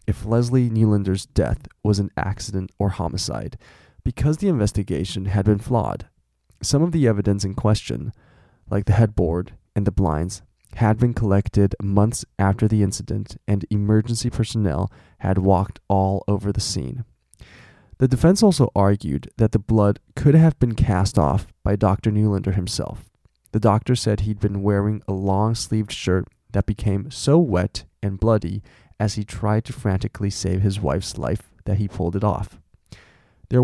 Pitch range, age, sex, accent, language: 95-115 Hz, 20-39, male, American, Chinese